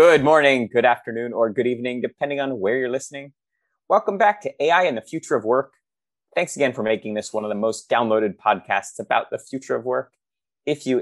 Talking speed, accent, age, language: 210 wpm, American, 30-49, English